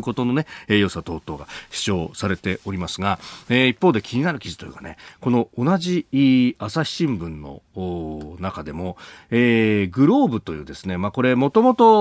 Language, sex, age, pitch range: Japanese, male, 40-59, 95-155 Hz